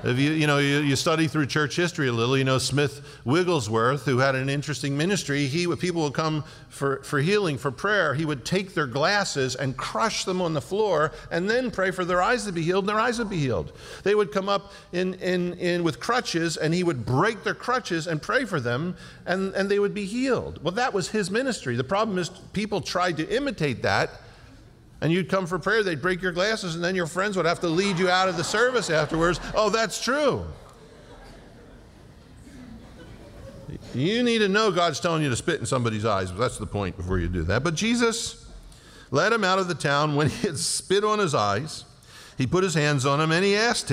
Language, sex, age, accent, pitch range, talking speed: English, male, 50-69, American, 140-190 Hz, 225 wpm